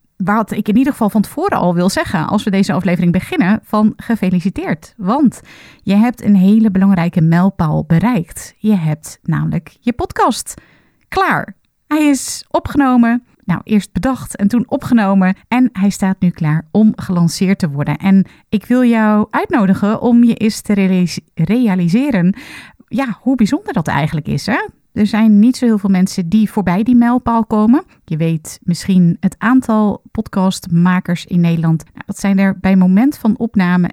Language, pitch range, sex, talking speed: Dutch, 180-220 Hz, female, 165 wpm